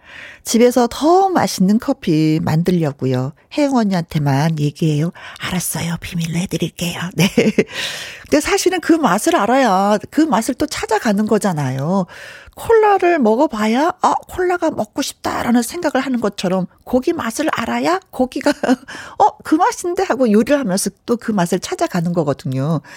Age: 40-59